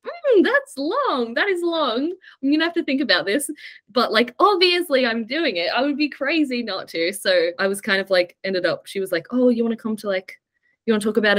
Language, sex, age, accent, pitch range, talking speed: English, female, 10-29, Australian, 180-275 Hz, 255 wpm